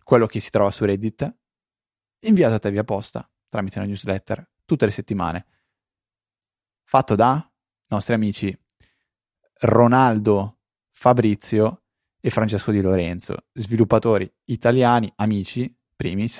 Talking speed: 115 wpm